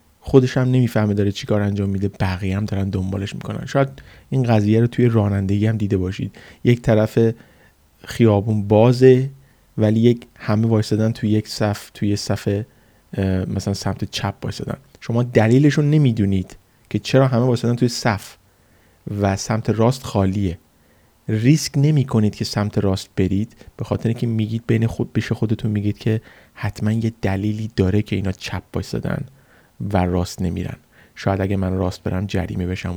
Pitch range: 100-120 Hz